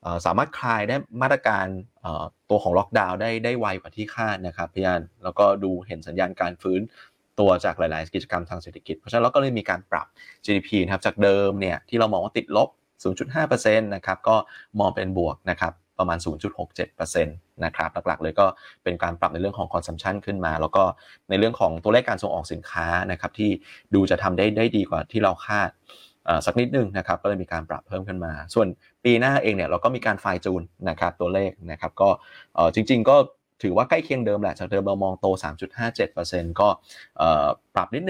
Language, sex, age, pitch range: Thai, male, 20-39, 85-105 Hz